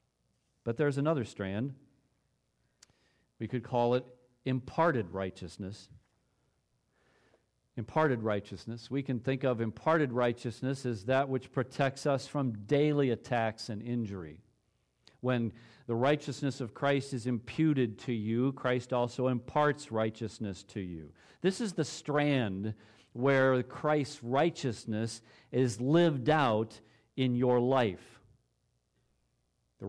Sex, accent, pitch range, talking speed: male, American, 110-135 Hz, 115 wpm